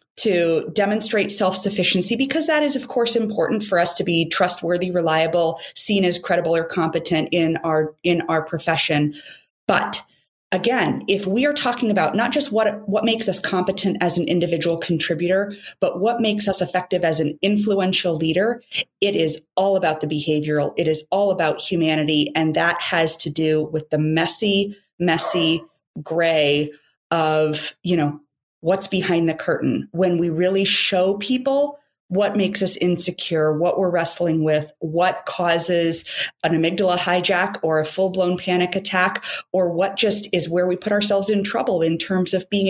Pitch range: 165-195 Hz